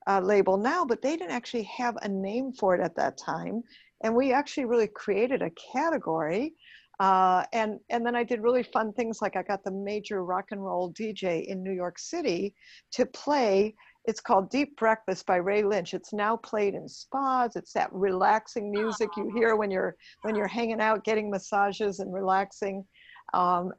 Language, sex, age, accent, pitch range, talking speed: English, female, 50-69, American, 195-245 Hz, 190 wpm